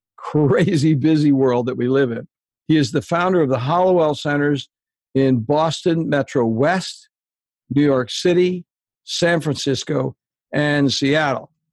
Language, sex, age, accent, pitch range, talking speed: English, male, 60-79, American, 130-165 Hz, 135 wpm